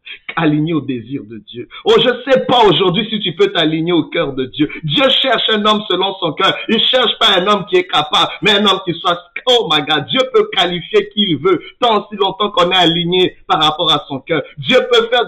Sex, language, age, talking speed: male, French, 50-69, 245 wpm